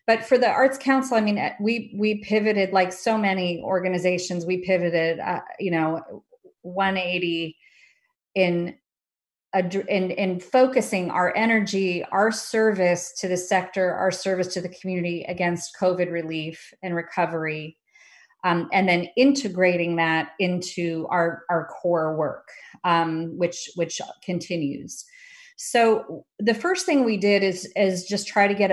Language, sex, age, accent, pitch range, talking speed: English, female, 30-49, American, 180-215 Hz, 140 wpm